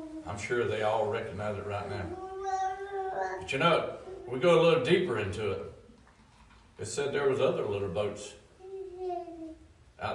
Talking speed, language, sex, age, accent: 155 wpm, English, male, 60-79, American